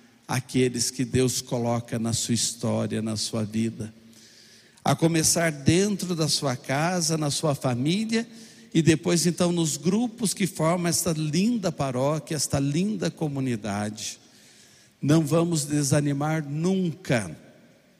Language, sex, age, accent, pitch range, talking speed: Portuguese, male, 60-79, Brazilian, 130-170 Hz, 120 wpm